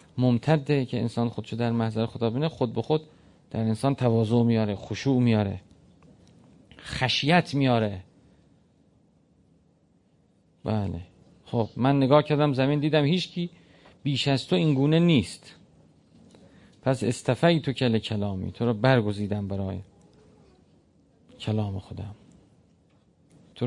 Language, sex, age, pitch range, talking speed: Persian, male, 40-59, 110-155 Hz, 110 wpm